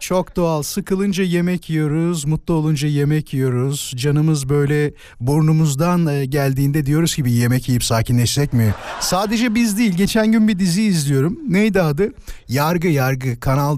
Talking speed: 145 wpm